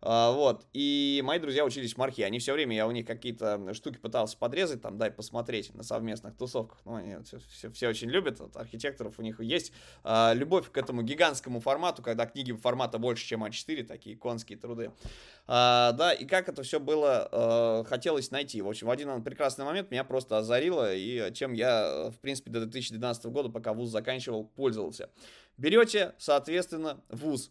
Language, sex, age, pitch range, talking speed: Russian, male, 20-39, 115-150 Hz, 170 wpm